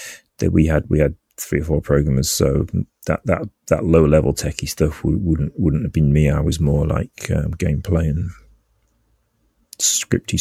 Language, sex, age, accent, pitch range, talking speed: English, male, 30-49, British, 75-90 Hz, 165 wpm